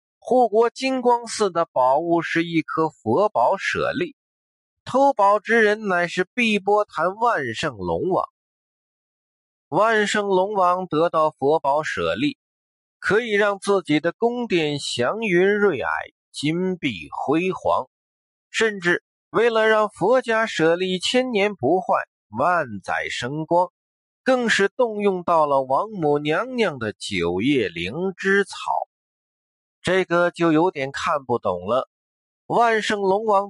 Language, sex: Chinese, male